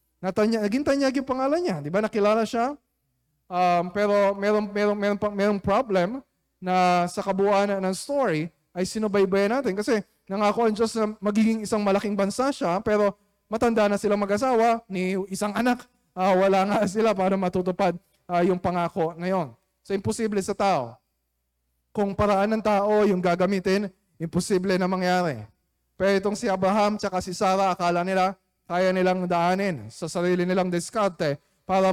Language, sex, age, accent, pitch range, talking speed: Filipino, male, 20-39, native, 175-205 Hz, 150 wpm